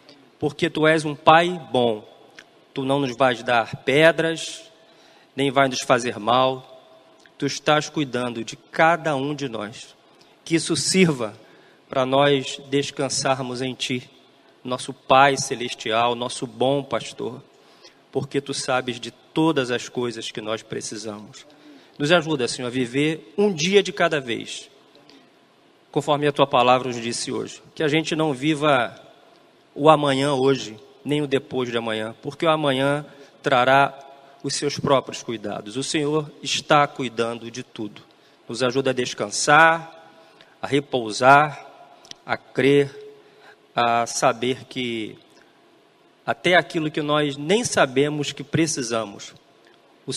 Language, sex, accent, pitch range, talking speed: Portuguese, male, Brazilian, 125-155 Hz, 135 wpm